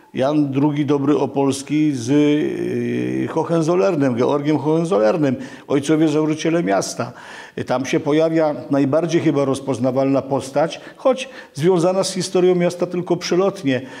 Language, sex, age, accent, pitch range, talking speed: Polish, male, 50-69, native, 135-175 Hz, 105 wpm